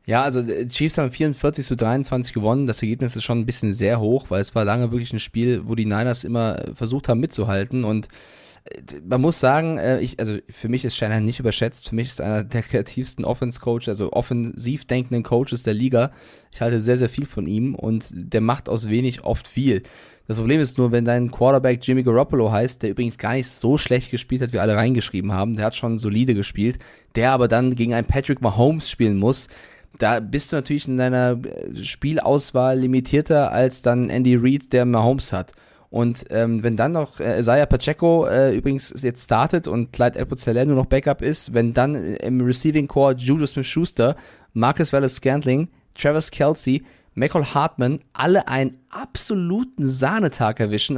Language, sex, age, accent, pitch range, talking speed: German, male, 20-39, German, 115-135 Hz, 185 wpm